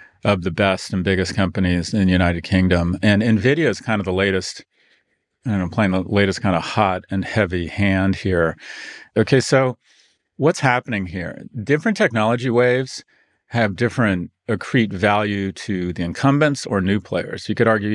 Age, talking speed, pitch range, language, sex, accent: 40-59, 165 wpm, 95-110 Hz, English, male, American